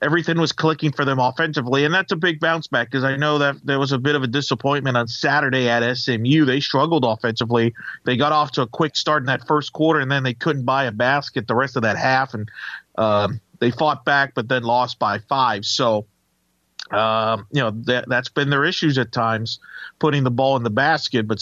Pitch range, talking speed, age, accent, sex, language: 125-160 Hz, 225 wpm, 40-59, American, male, English